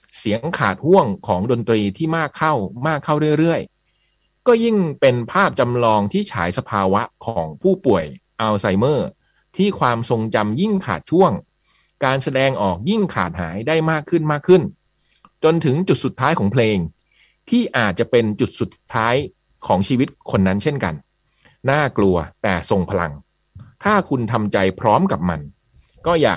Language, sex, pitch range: Thai, male, 100-150 Hz